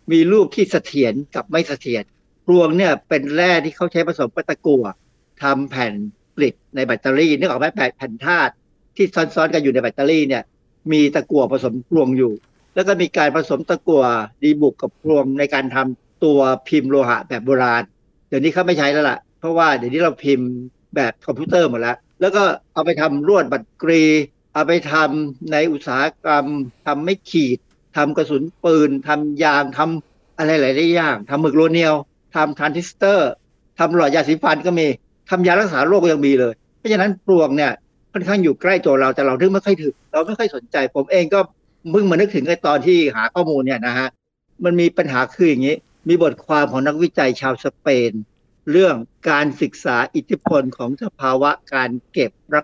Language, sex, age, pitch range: Thai, male, 60-79, 135-170 Hz